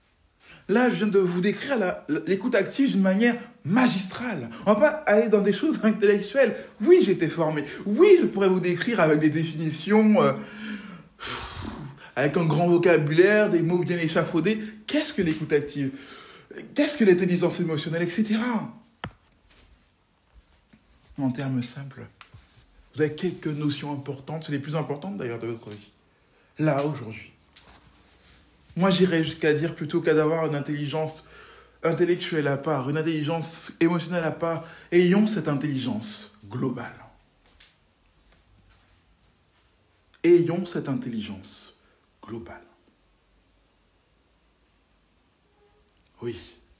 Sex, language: male, French